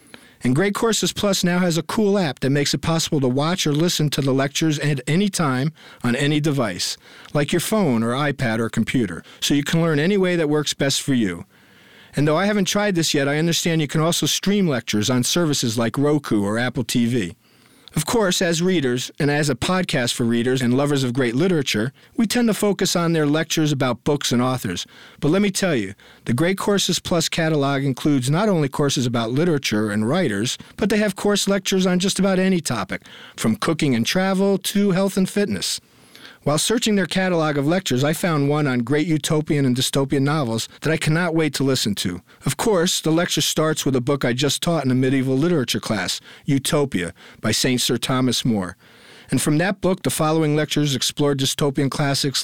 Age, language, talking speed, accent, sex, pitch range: 50-69, English, 205 wpm, American, male, 130-175 Hz